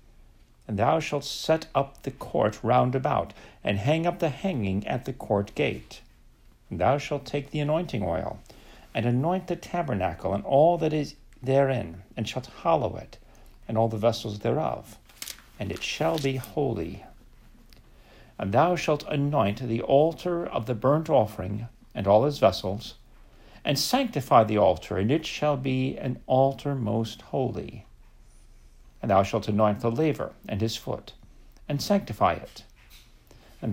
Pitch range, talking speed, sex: 100-140 Hz, 155 wpm, male